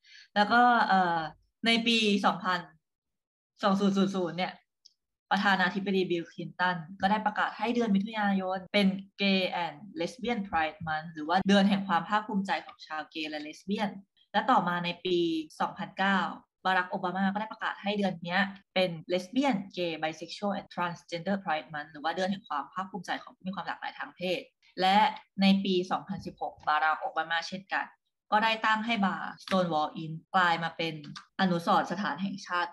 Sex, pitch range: female, 170-205 Hz